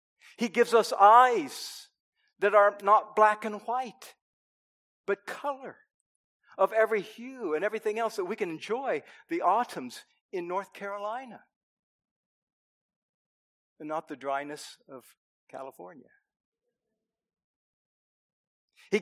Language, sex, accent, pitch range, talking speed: English, male, American, 185-250 Hz, 105 wpm